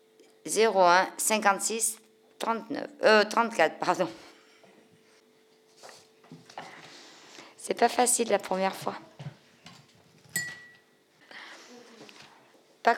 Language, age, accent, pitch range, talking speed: French, 50-69, French, 185-220 Hz, 60 wpm